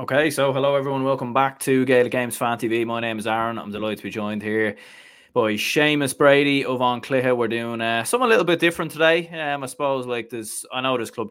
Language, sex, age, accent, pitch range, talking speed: English, male, 20-39, Irish, 105-130 Hz, 235 wpm